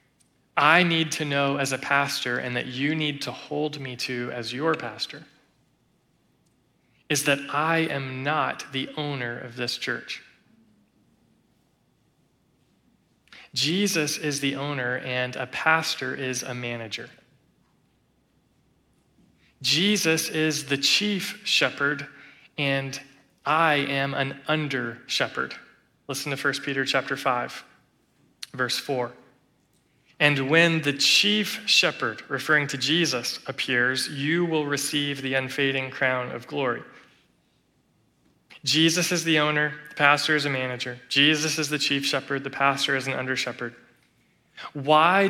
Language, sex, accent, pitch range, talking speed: English, male, American, 130-155 Hz, 125 wpm